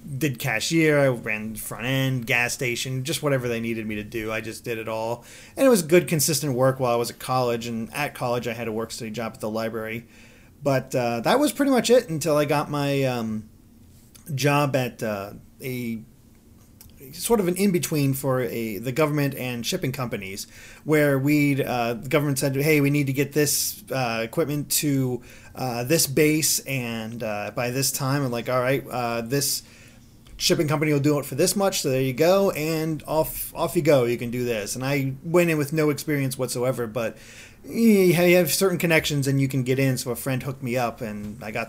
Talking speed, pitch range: 215 wpm, 115-155 Hz